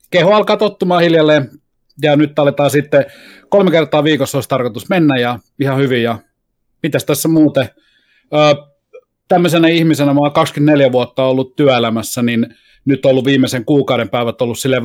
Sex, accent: male, native